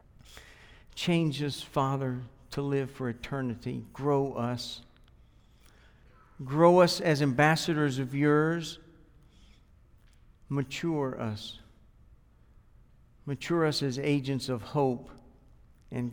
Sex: male